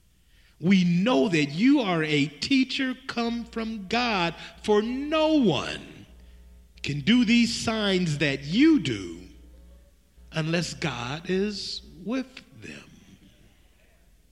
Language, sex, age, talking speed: English, male, 50-69, 105 wpm